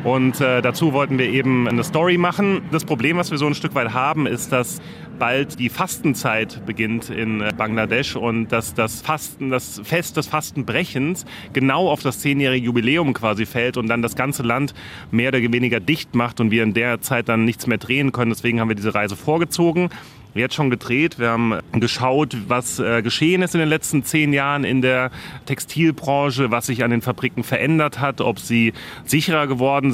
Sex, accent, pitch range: male, German, 115-135 Hz